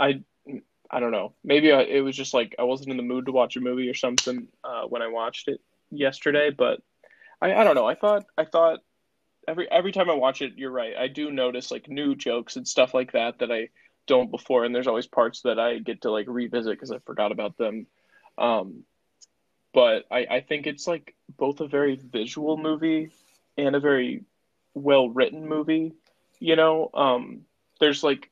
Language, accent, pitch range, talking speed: English, American, 125-150 Hz, 200 wpm